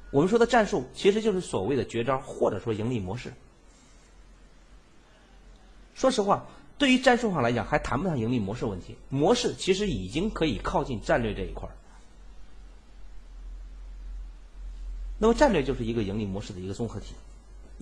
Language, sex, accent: Chinese, male, native